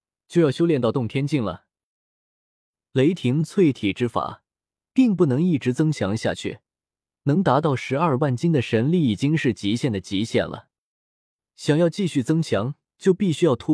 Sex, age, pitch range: male, 20-39, 110-165 Hz